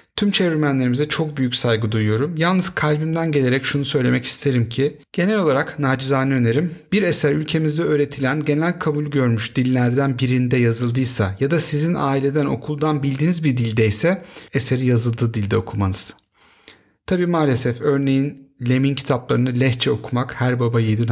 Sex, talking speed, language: male, 140 wpm, Turkish